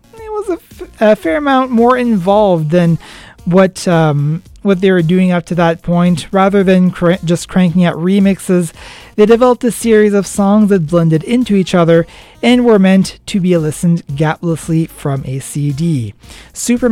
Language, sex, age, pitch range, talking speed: English, male, 30-49, 165-215 Hz, 165 wpm